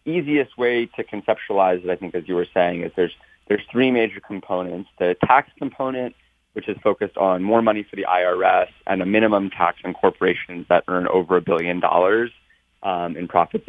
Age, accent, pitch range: 30-49, American, 90-115 Hz